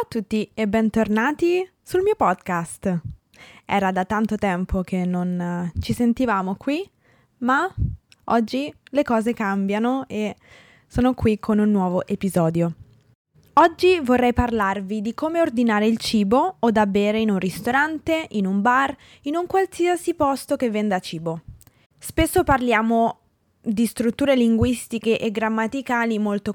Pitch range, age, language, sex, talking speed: 195-265 Hz, 20-39, Italian, female, 140 wpm